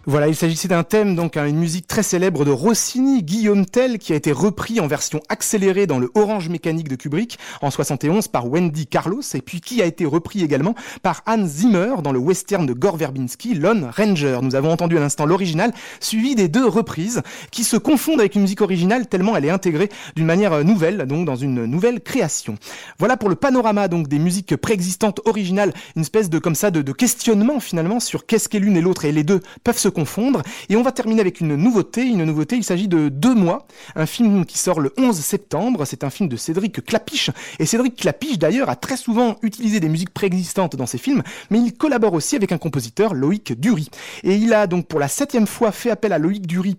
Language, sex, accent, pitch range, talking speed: French, male, French, 165-225 Hz, 220 wpm